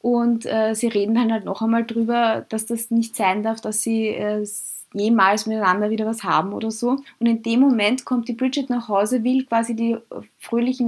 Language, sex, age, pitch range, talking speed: German, female, 20-39, 220-255 Hz, 205 wpm